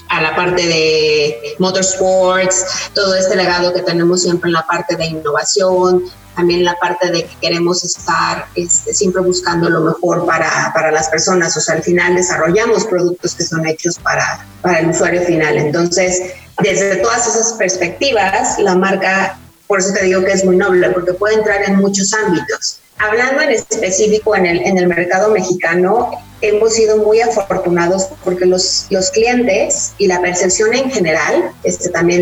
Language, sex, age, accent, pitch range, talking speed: Spanish, female, 30-49, Mexican, 175-205 Hz, 170 wpm